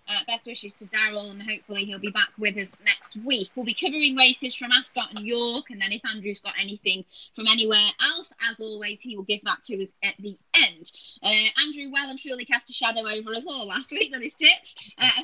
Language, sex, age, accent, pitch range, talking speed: English, female, 20-39, British, 200-250 Hz, 230 wpm